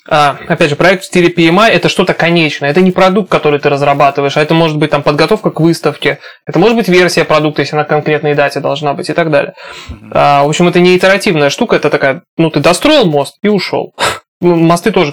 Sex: male